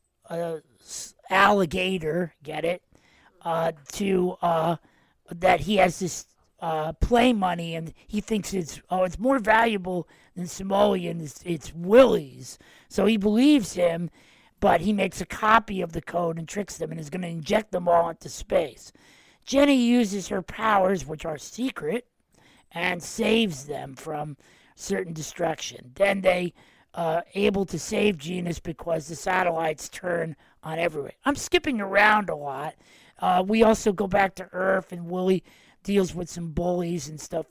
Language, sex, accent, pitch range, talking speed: English, male, American, 165-205 Hz, 150 wpm